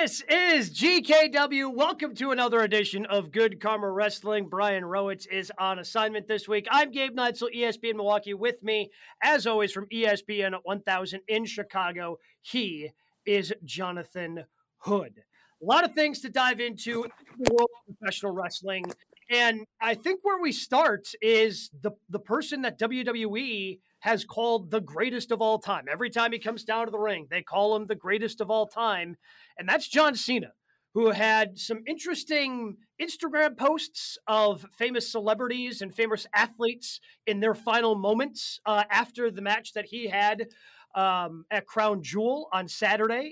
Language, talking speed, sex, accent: English, 160 wpm, male, American